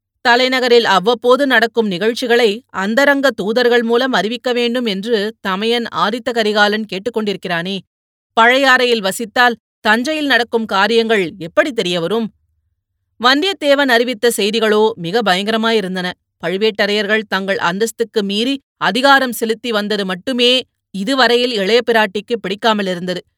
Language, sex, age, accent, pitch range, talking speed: Tamil, female, 30-49, native, 195-240 Hz, 95 wpm